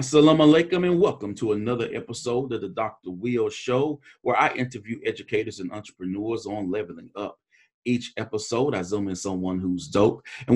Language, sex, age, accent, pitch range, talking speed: English, male, 40-59, American, 110-145 Hz, 170 wpm